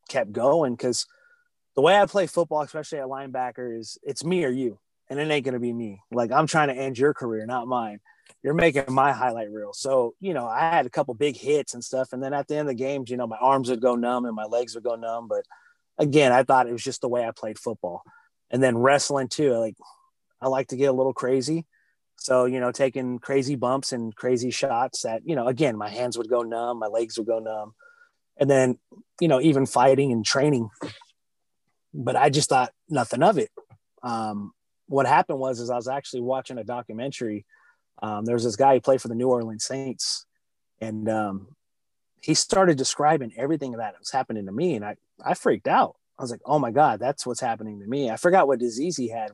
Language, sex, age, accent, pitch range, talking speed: English, male, 30-49, American, 115-140 Hz, 225 wpm